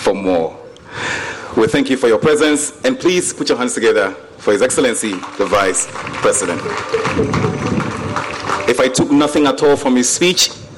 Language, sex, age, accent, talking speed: English, male, 40-59, Nigerian, 160 wpm